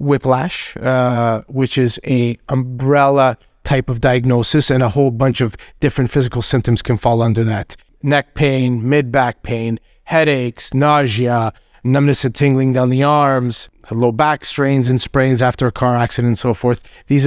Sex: male